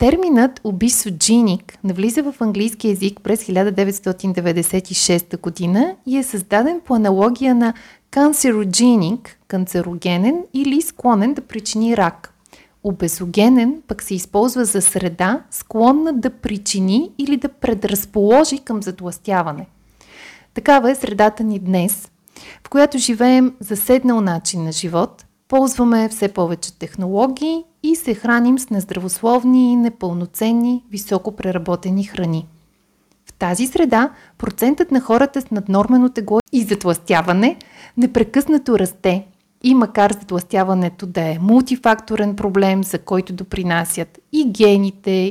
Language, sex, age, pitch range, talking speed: Bulgarian, female, 30-49, 190-250 Hz, 115 wpm